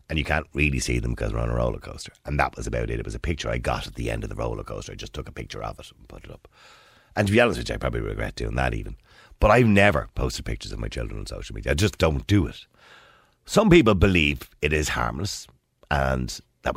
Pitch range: 65-105 Hz